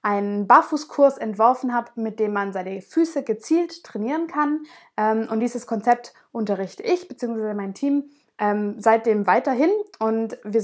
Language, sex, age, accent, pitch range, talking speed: German, female, 20-39, German, 220-280 Hz, 135 wpm